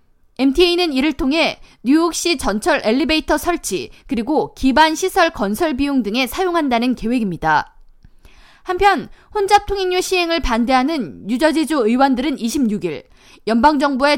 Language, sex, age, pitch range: Korean, female, 20-39, 250-345 Hz